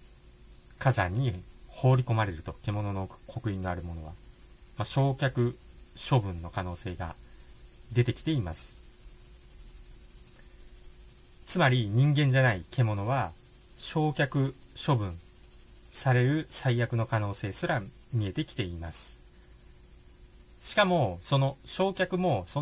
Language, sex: Japanese, male